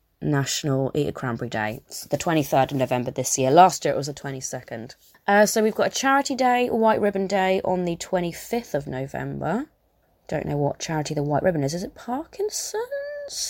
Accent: British